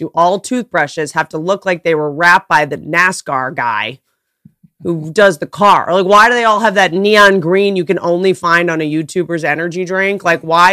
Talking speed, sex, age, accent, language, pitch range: 215 wpm, female, 30-49, American, English, 170-240 Hz